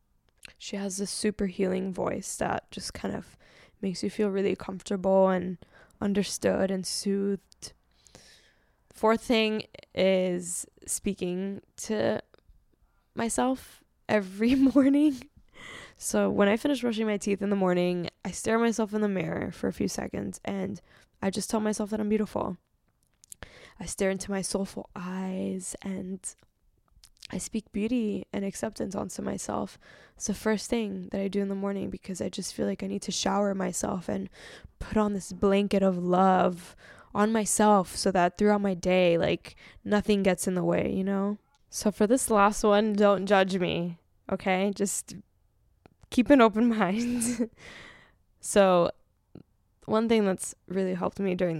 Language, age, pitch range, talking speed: English, 10-29, 190-215 Hz, 155 wpm